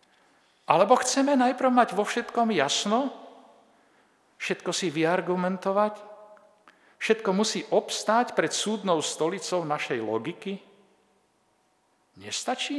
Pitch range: 155-225 Hz